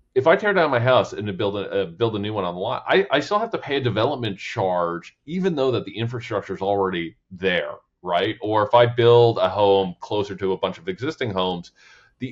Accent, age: American, 40-59